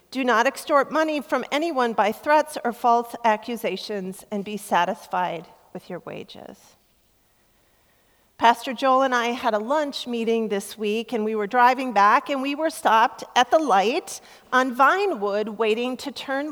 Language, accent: English, American